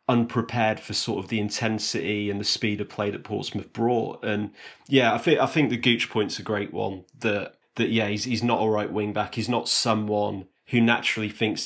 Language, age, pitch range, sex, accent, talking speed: English, 30-49, 105-120 Hz, male, British, 210 wpm